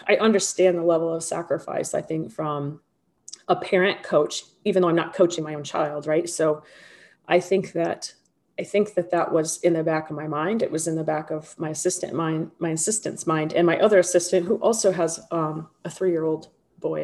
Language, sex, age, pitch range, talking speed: English, female, 30-49, 160-185 Hz, 210 wpm